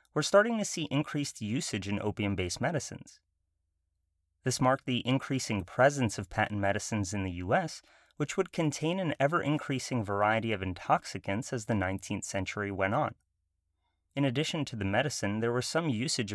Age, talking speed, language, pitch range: 30-49, 160 wpm, English, 100-140 Hz